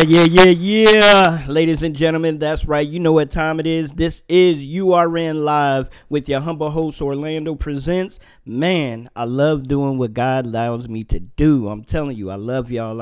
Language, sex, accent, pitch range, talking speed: English, male, American, 130-160 Hz, 185 wpm